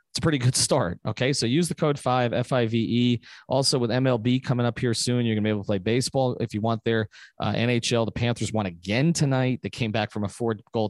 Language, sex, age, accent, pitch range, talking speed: English, male, 30-49, American, 110-135 Hz, 240 wpm